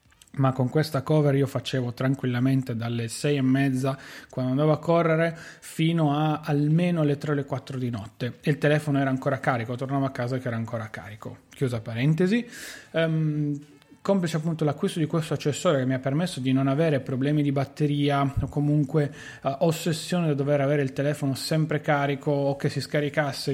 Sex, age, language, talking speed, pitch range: male, 30-49, Italian, 185 wpm, 130-155 Hz